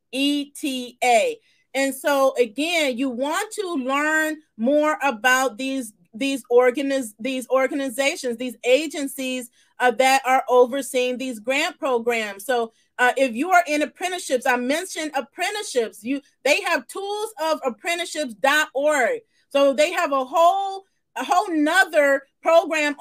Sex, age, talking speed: female, 30-49, 125 wpm